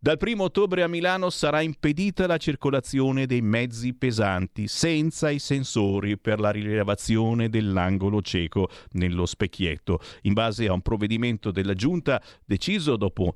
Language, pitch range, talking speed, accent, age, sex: Italian, 100-135 Hz, 140 wpm, native, 50-69, male